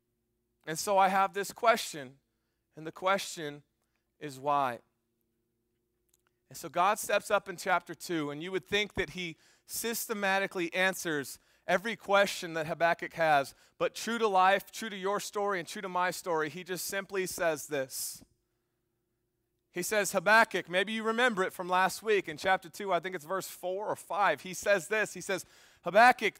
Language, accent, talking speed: English, American, 175 wpm